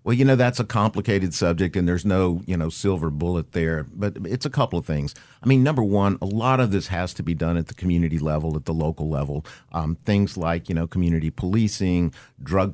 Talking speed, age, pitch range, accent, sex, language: 230 wpm, 50-69, 85-105 Hz, American, male, English